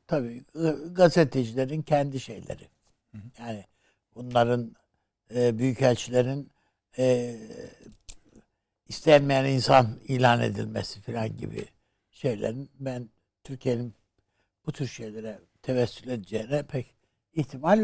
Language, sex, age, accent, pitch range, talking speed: Turkish, male, 60-79, native, 110-140 Hz, 85 wpm